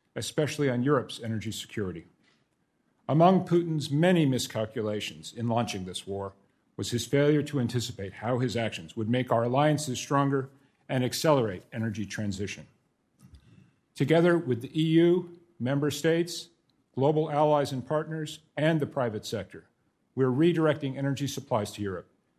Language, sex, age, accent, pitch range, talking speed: English, male, 50-69, American, 120-155 Hz, 135 wpm